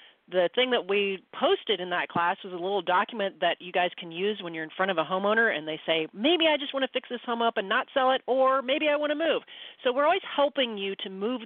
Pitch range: 185-250 Hz